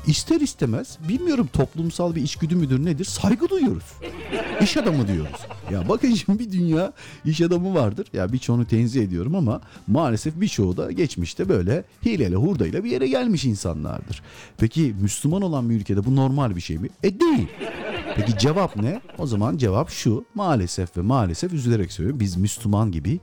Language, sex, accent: Turkish, male, native